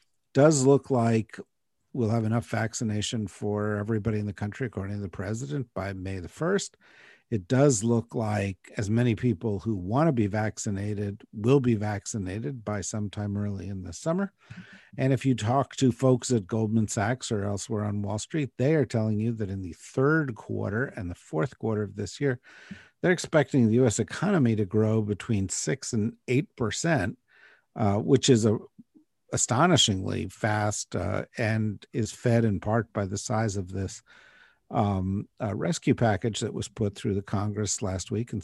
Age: 50-69